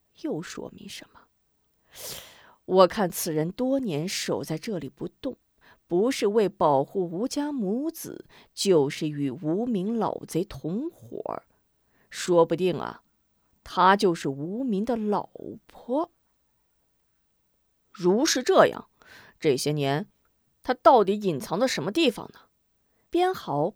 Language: Chinese